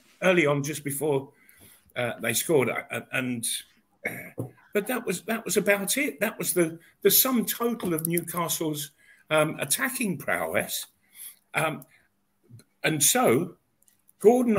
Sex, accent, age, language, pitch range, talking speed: male, British, 50-69, English, 135-195 Hz, 125 wpm